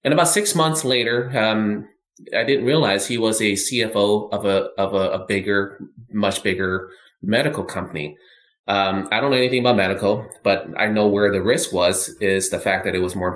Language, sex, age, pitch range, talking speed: English, male, 20-39, 95-120 Hz, 200 wpm